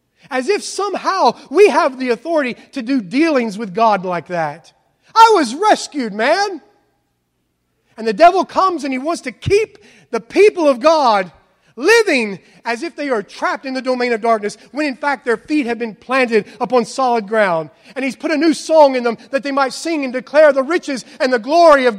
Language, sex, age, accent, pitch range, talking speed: English, male, 40-59, American, 230-310 Hz, 200 wpm